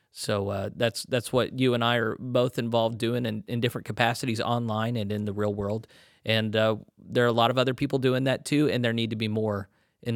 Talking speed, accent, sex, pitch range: 240 wpm, American, male, 105-130 Hz